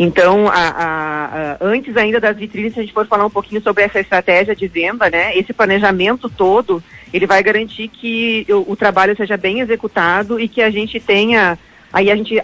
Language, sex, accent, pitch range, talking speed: Portuguese, female, Brazilian, 180-220 Hz, 205 wpm